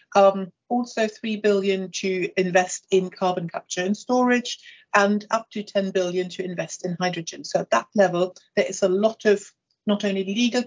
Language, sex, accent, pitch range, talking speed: English, female, British, 185-215 Hz, 180 wpm